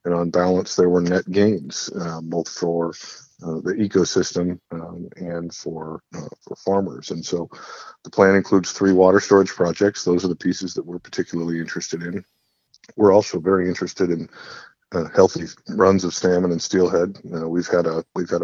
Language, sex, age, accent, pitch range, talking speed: English, male, 50-69, American, 85-90 Hz, 180 wpm